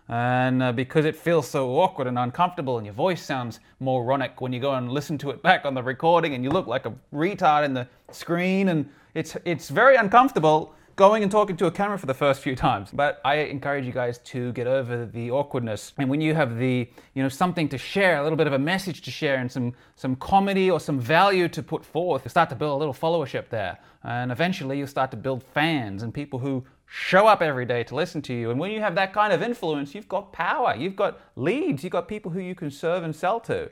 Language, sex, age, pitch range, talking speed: English, male, 30-49, 130-165 Hz, 245 wpm